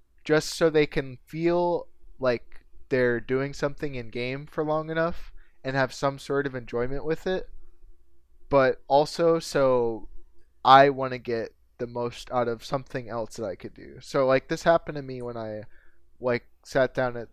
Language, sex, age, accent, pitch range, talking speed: English, male, 20-39, American, 115-135 Hz, 175 wpm